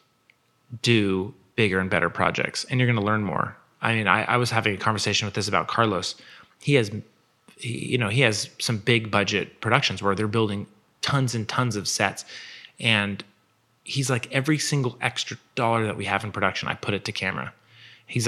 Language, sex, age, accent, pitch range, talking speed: English, male, 30-49, American, 100-120 Hz, 195 wpm